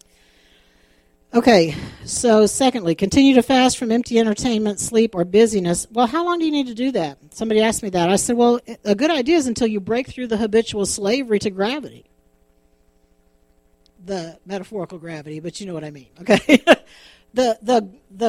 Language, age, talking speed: English, 50-69, 175 wpm